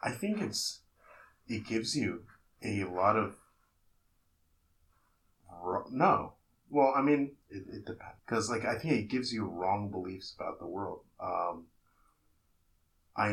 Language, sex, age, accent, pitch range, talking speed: English, male, 30-49, American, 90-105 Hz, 125 wpm